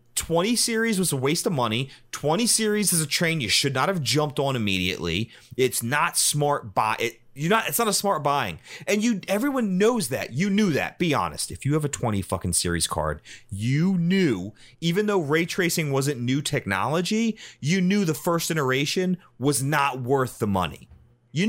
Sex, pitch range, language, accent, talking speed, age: male, 105-160 Hz, English, American, 195 wpm, 30-49